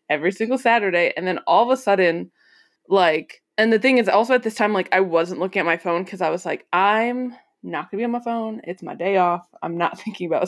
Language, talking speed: English, 260 wpm